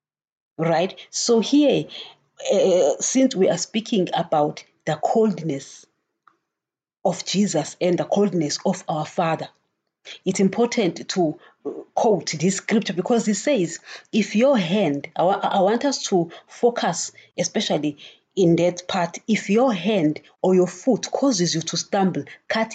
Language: English